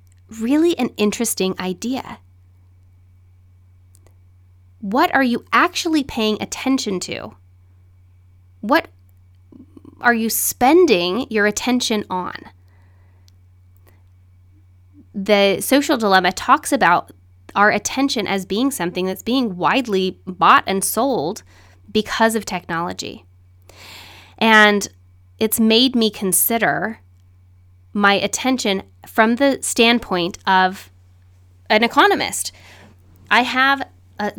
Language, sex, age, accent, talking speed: English, female, 20-39, American, 90 wpm